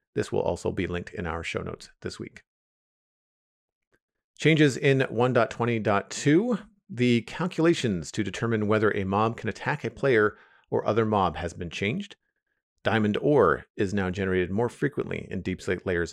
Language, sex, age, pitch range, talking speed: English, male, 40-59, 95-125 Hz, 155 wpm